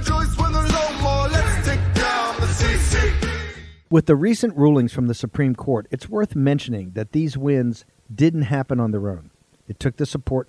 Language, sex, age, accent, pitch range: English, male, 50-69, American, 110-140 Hz